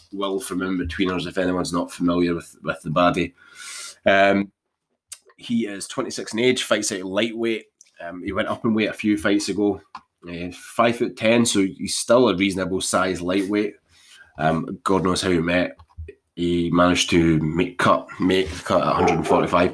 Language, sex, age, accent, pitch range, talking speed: English, male, 20-39, British, 85-105 Hz, 175 wpm